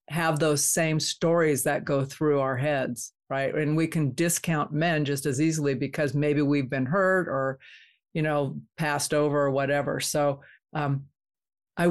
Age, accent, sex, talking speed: 50-69, American, female, 165 wpm